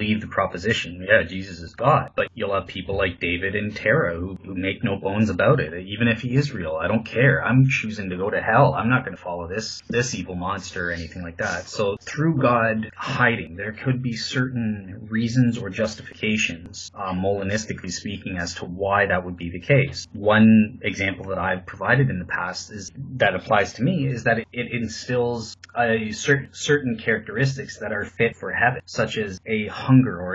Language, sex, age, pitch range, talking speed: English, male, 30-49, 95-120 Hz, 200 wpm